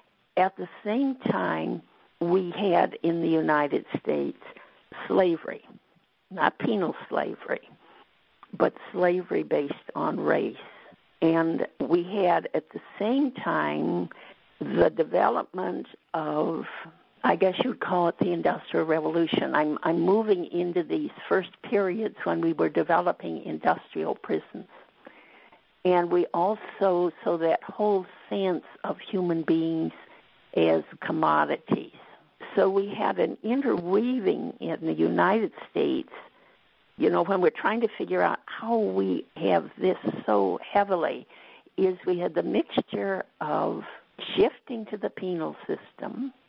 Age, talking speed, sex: 60-79, 125 wpm, female